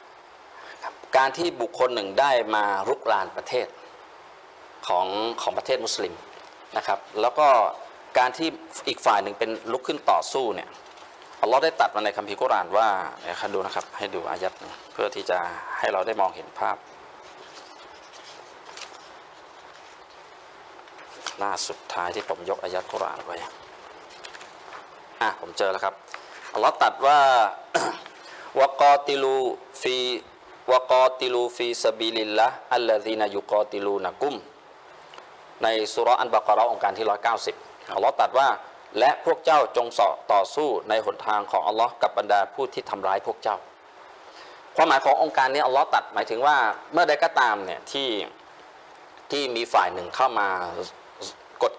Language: Thai